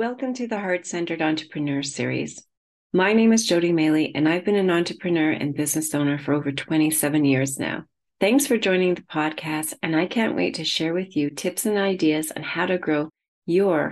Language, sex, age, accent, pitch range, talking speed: English, female, 40-59, American, 155-200 Hz, 195 wpm